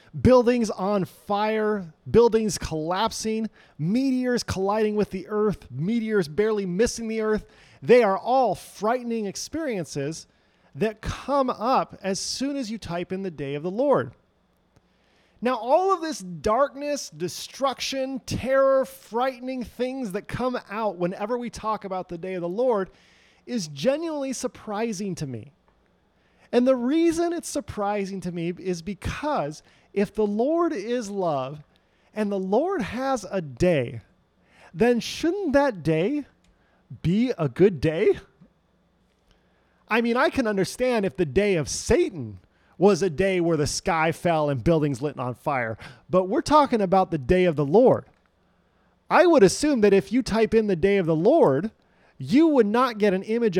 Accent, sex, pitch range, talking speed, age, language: American, male, 175-245 Hz, 155 wpm, 30-49, English